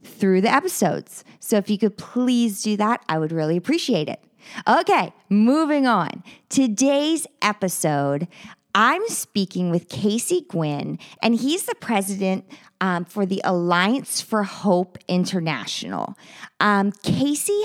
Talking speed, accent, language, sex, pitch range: 130 wpm, American, English, female, 180-235 Hz